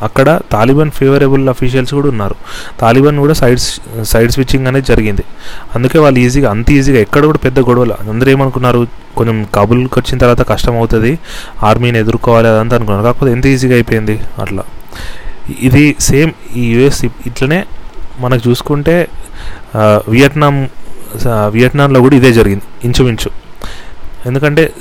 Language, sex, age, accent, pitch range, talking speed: Telugu, male, 30-49, native, 110-135 Hz, 125 wpm